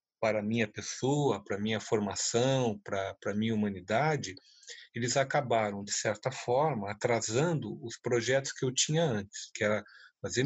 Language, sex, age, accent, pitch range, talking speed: Portuguese, male, 40-59, Brazilian, 110-135 Hz, 145 wpm